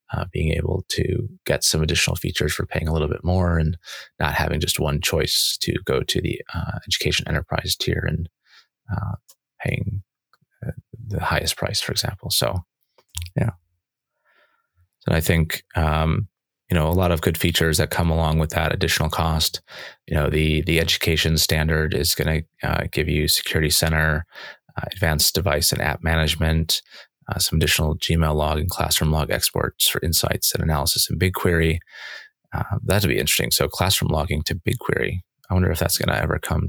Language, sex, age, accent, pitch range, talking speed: English, male, 30-49, American, 80-95 Hz, 175 wpm